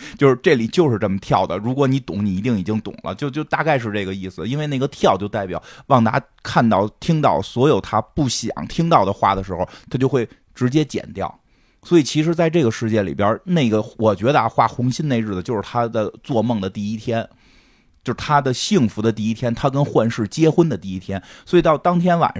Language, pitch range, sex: Chinese, 100-145 Hz, male